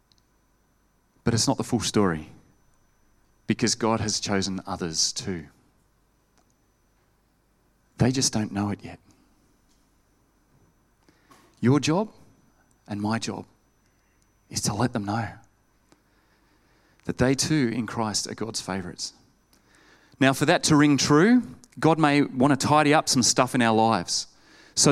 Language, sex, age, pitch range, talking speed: English, male, 30-49, 115-155 Hz, 130 wpm